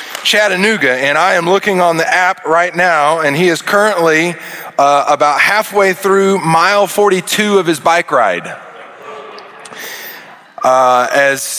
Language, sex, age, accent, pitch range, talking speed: English, male, 20-39, American, 125-175 Hz, 135 wpm